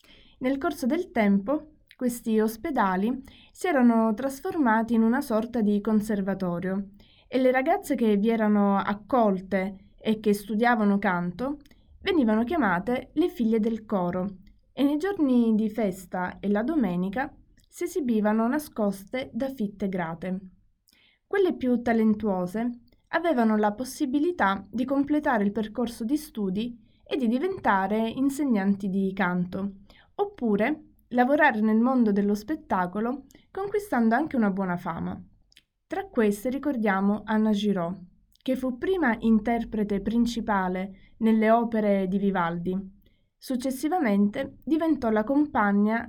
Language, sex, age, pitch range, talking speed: Italian, female, 20-39, 200-260 Hz, 120 wpm